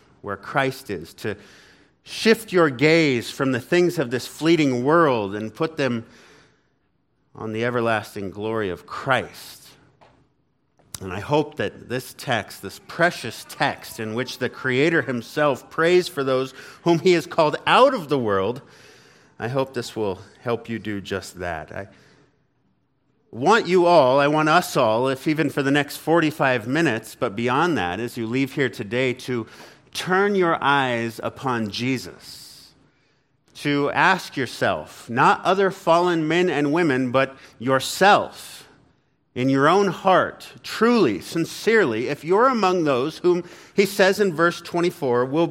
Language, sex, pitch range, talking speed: English, male, 125-170 Hz, 150 wpm